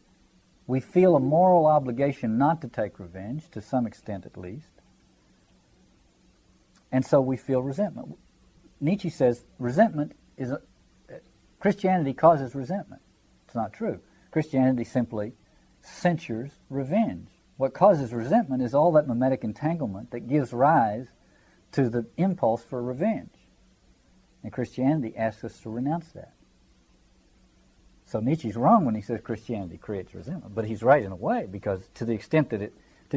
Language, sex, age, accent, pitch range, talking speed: English, male, 50-69, American, 105-150 Hz, 145 wpm